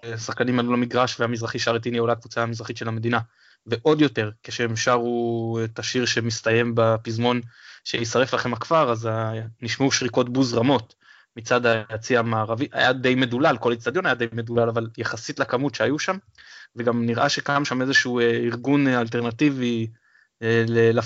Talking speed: 145 wpm